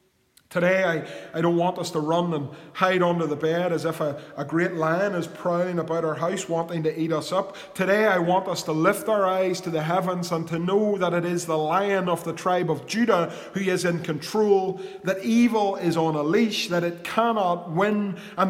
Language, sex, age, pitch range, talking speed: English, male, 20-39, 155-190 Hz, 220 wpm